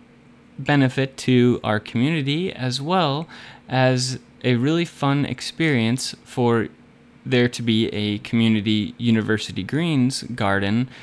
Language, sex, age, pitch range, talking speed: English, male, 20-39, 115-145 Hz, 110 wpm